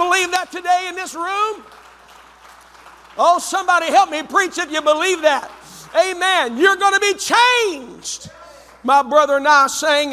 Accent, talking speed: American, 150 wpm